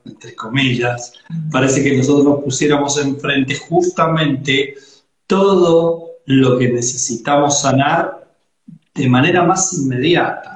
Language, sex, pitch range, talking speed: Spanish, male, 140-170 Hz, 100 wpm